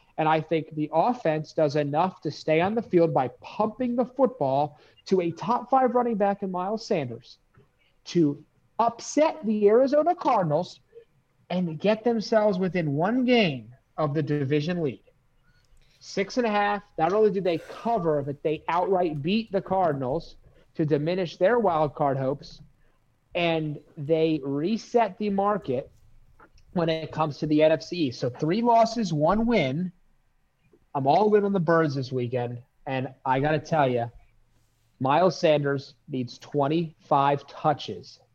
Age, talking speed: 30-49, 150 wpm